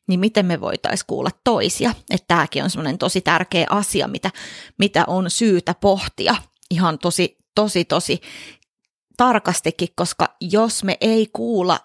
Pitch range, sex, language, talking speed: 175-205 Hz, female, Finnish, 135 wpm